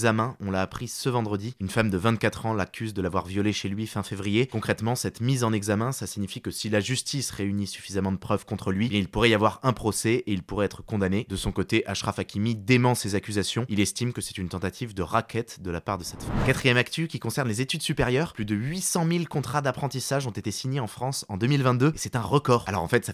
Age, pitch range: 20-39, 100-125 Hz